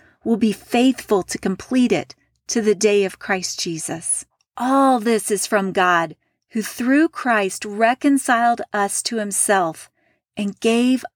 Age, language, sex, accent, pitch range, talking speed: 40-59, English, female, American, 200-265 Hz, 140 wpm